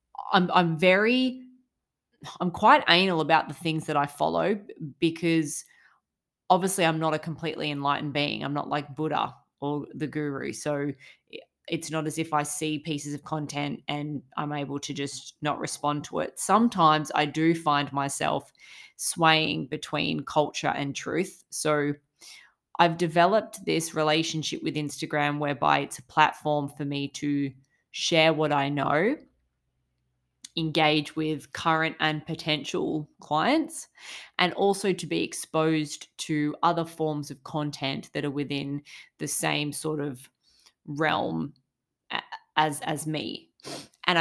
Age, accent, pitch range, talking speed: 20-39, Australian, 145-170 Hz, 140 wpm